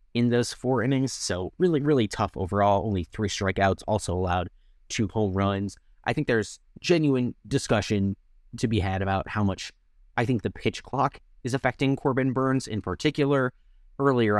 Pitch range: 95-125 Hz